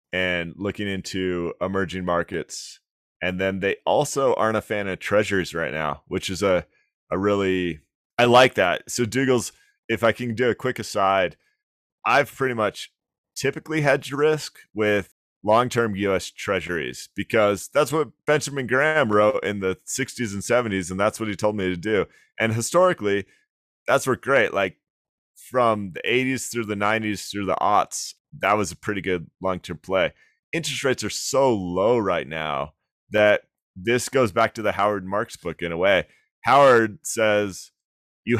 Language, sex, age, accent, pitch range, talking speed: English, male, 30-49, American, 95-120 Hz, 165 wpm